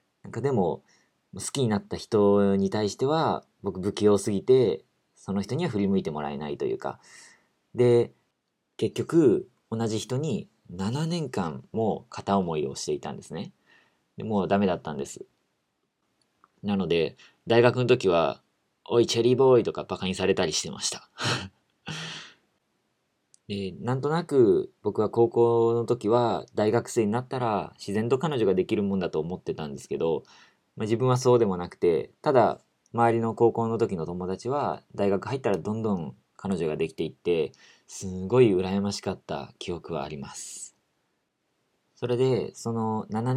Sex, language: male, Japanese